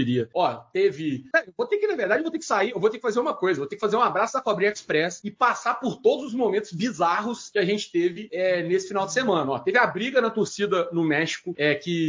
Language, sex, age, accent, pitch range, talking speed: Portuguese, male, 40-59, Brazilian, 175-230 Hz, 265 wpm